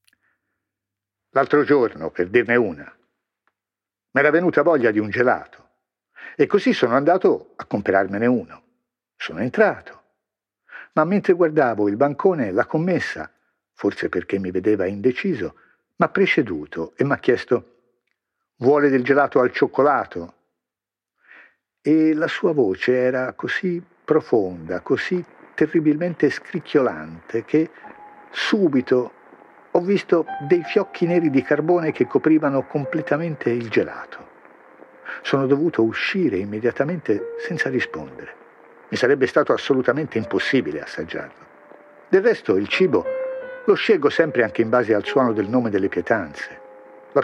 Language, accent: Italian, native